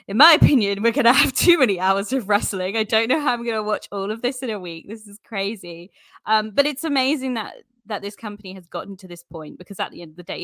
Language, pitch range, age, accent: English, 170-230 Hz, 20-39, British